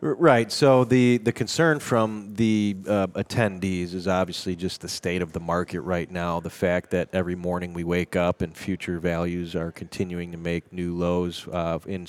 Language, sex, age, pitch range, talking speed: English, male, 30-49, 90-105 Hz, 190 wpm